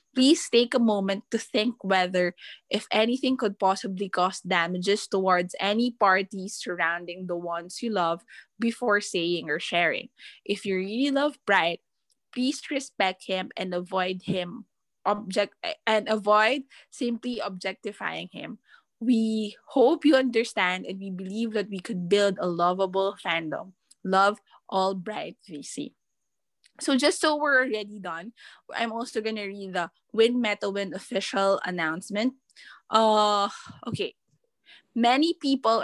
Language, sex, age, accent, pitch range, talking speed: English, female, 20-39, Filipino, 190-230 Hz, 135 wpm